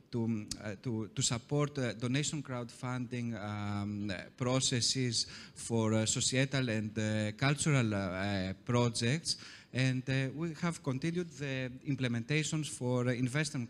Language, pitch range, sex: Greek, 120-150 Hz, male